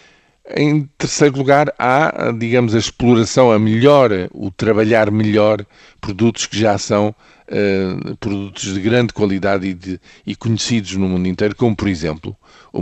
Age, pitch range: 50-69, 95-115 Hz